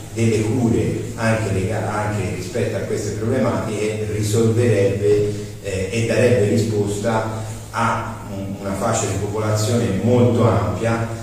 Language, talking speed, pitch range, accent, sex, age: Italian, 110 wpm, 100-115 Hz, native, male, 40-59